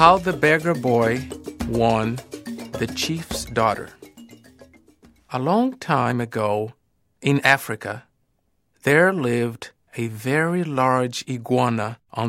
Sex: male